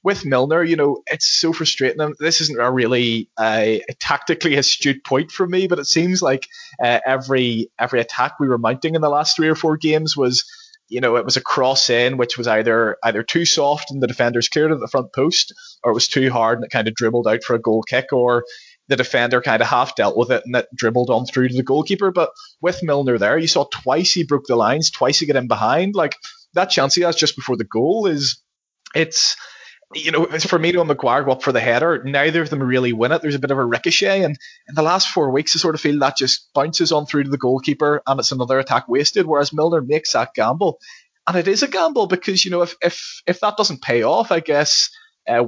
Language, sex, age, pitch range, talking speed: English, male, 20-39, 125-170 Hz, 250 wpm